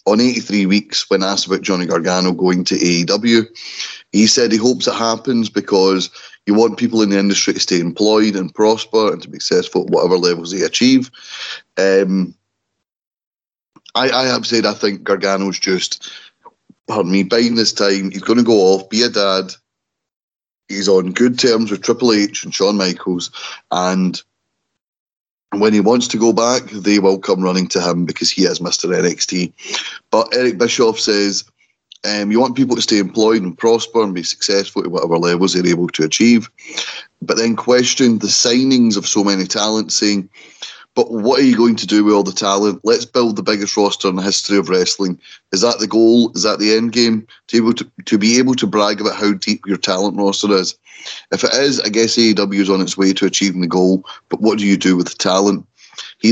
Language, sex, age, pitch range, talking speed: English, male, 30-49, 95-115 Hz, 200 wpm